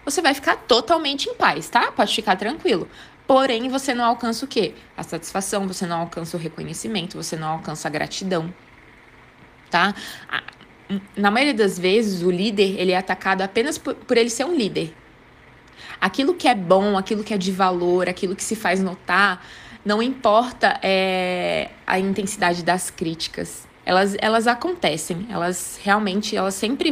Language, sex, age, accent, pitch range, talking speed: Portuguese, female, 20-39, Brazilian, 190-235 Hz, 160 wpm